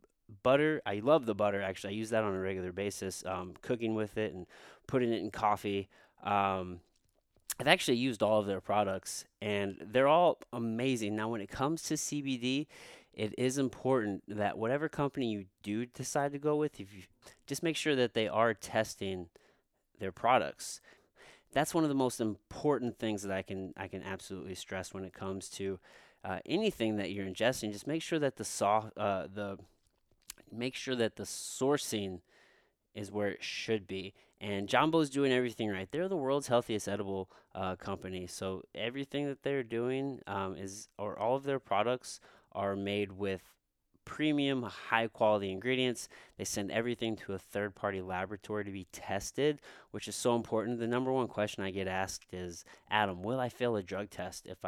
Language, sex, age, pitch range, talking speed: English, male, 30-49, 95-125 Hz, 185 wpm